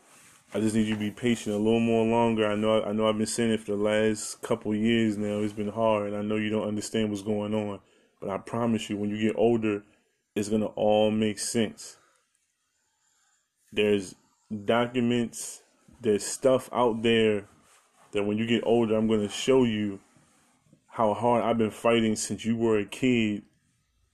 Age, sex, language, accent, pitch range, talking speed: 20-39, male, English, American, 105-115 Hz, 200 wpm